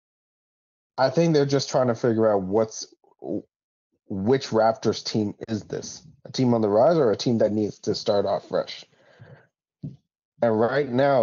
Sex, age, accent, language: male, 20-39, American, English